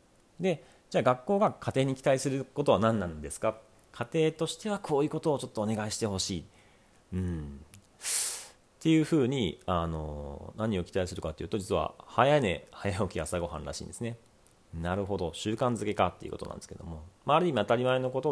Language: Japanese